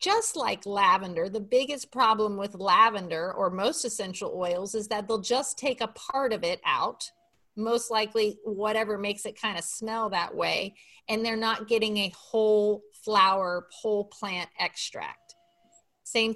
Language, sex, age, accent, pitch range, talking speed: English, female, 30-49, American, 210-275 Hz, 160 wpm